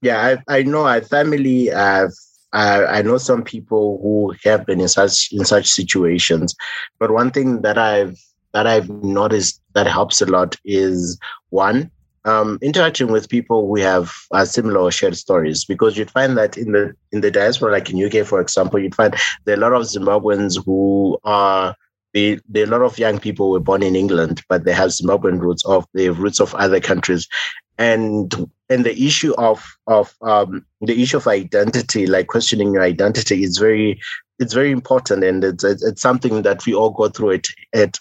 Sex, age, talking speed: male, 30-49, 195 wpm